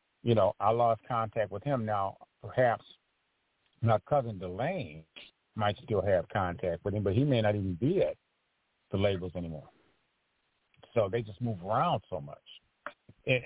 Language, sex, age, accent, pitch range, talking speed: English, male, 50-69, American, 100-120 Hz, 160 wpm